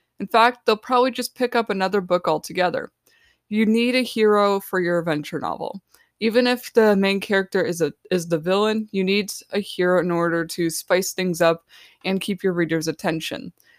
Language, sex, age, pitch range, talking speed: English, female, 20-39, 180-230 Hz, 185 wpm